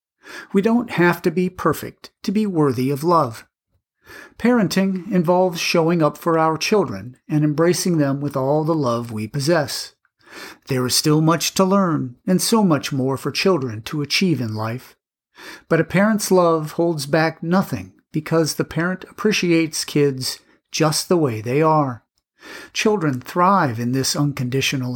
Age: 50-69